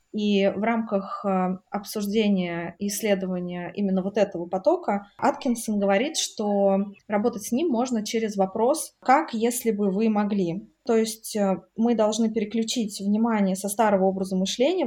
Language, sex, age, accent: Russian, female, 20-39, native